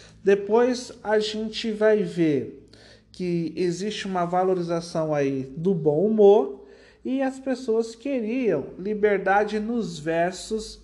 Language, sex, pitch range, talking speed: Portuguese, male, 160-215 Hz, 110 wpm